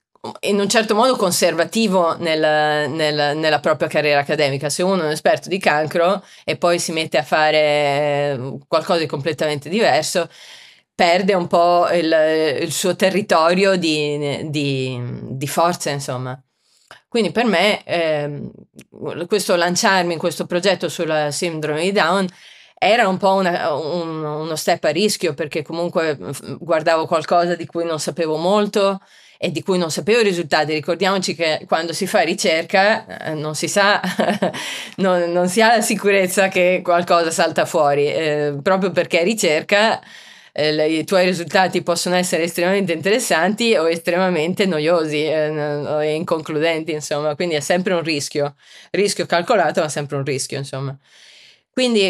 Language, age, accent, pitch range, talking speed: Italian, 30-49, native, 155-195 Hz, 145 wpm